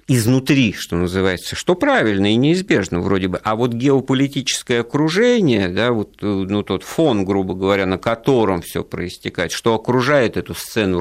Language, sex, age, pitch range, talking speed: Russian, male, 50-69, 95-125 Hz, 155 wpm